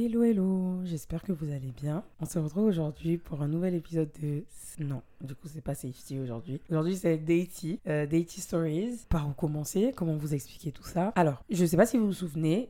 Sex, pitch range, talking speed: female, 155-195 Hz, 215 wpm